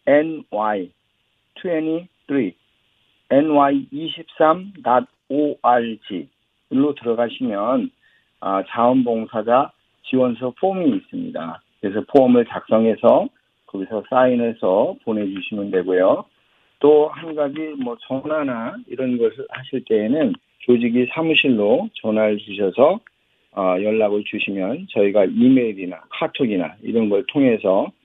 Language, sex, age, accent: Korean, male, 50-69, native